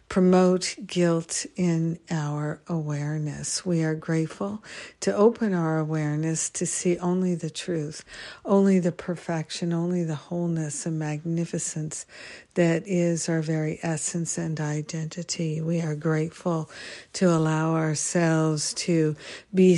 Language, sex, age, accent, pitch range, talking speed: English, female, 60-79, American, 160-180 Hz, 120 wpm